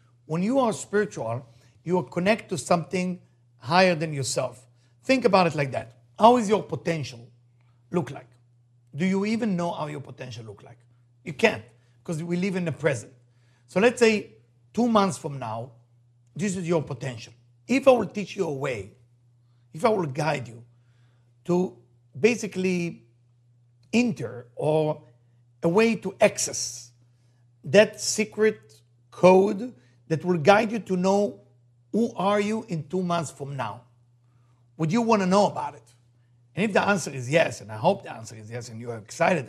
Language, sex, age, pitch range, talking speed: English, male, 50-69, 120-190 Hz, 170 wpm